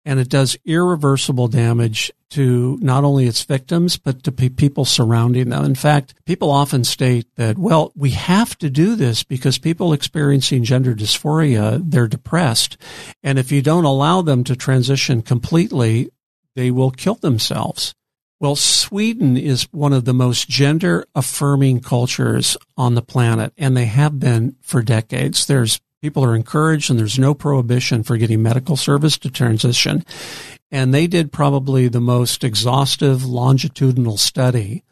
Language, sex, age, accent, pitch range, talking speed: English, male, 50-69, American, 125-145 Hz, 155 wpm